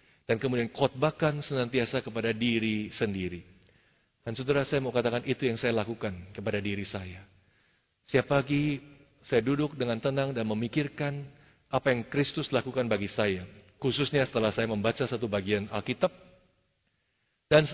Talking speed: 140 wpm